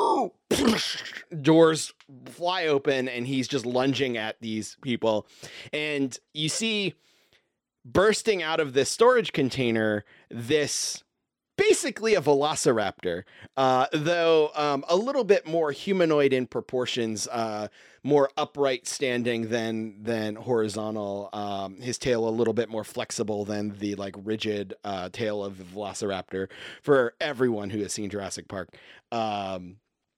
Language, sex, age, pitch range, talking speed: English, male, 30-49, 110-145 Hz, 130 wpm